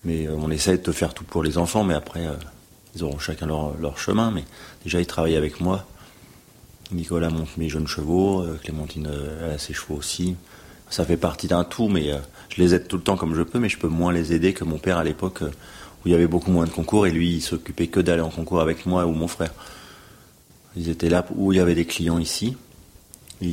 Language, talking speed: French, 250 wpm